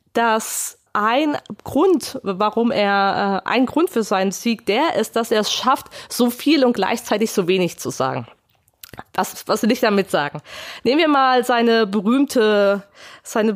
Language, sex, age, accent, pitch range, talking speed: German, female, 20-39, German, 185-240 Hz, 170 wpm